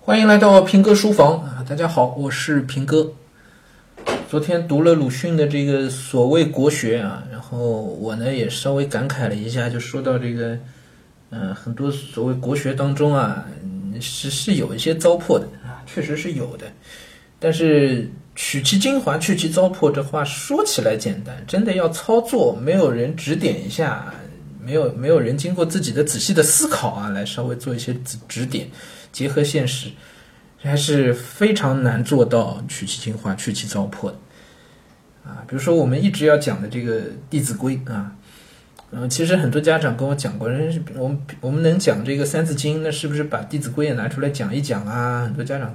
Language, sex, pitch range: Chinese, male, 120-155 Hz